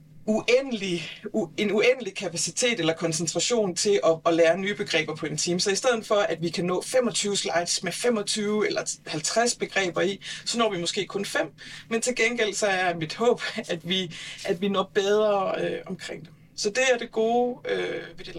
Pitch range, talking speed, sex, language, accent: 170-225 Hz, 200 wpm, female, Danish, native